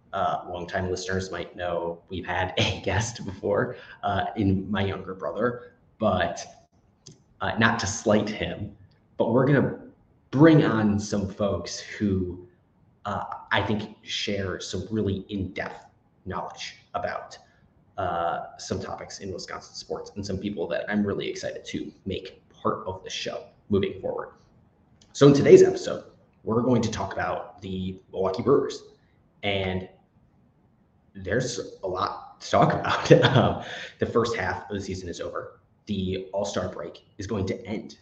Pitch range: 95-115 Hz